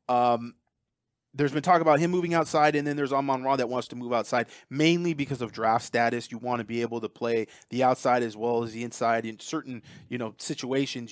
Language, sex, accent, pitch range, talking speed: English, male, American, 115-140 Hz, 225 wpm